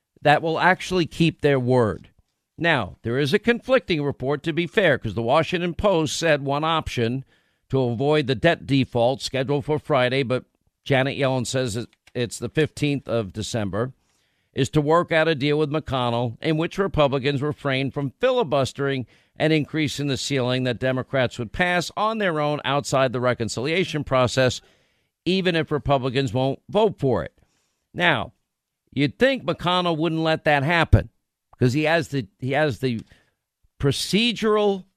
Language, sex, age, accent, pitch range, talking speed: English, male, 50-69, American, 130-180 Hz, 160 wpm